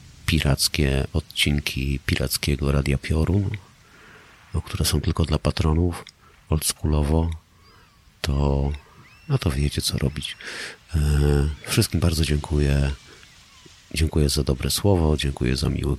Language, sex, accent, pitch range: Polish, male, native, 70-80 Hz